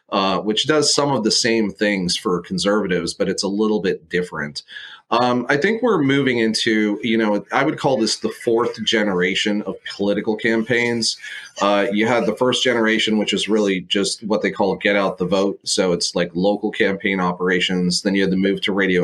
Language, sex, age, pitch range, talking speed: English, male, 30-49, 95-120 Hz, 200 wpm